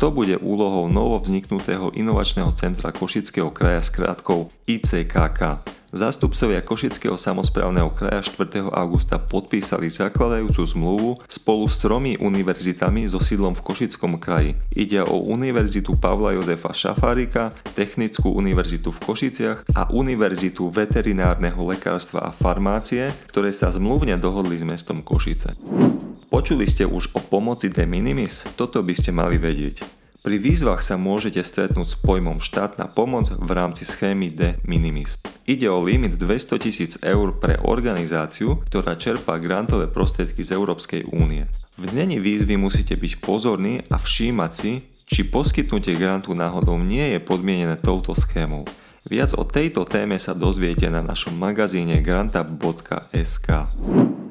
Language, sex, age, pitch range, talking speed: Slovak, male, 30-49, 85-105 Hz, 135 wpm